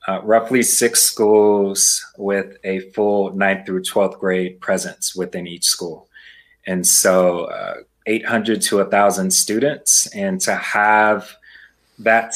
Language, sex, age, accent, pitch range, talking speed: English, male, 30-49, American, 95-110 Hz, 125 wpm